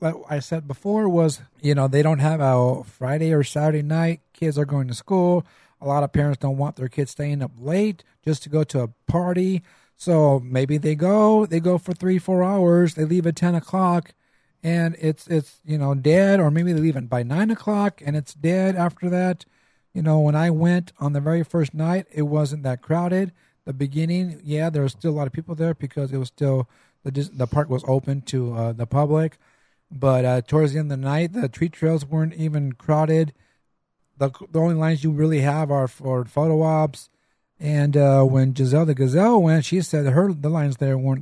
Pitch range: 135-165 Hz